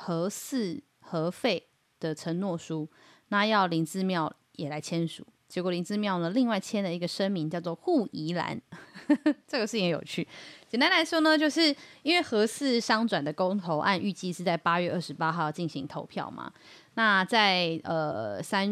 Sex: female